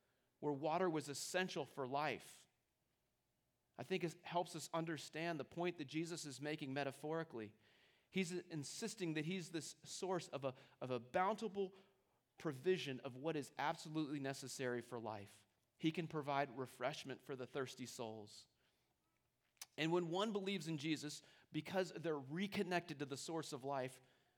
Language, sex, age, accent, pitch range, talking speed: English, male, 30-49, American, 135-175 Hz, 150 wpm